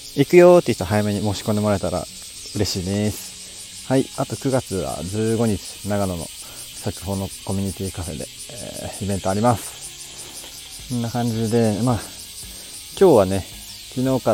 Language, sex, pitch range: Japanese, male, 90-115 Hz